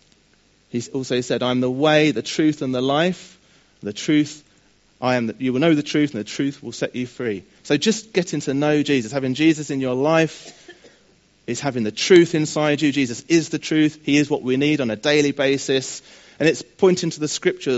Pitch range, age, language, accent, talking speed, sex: 120-150 Hz, 30-49, English, British, 215 wpm, male